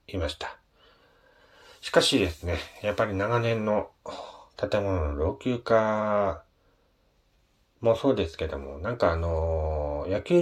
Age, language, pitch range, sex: 40-59, Japanese, 80-125 Hz, male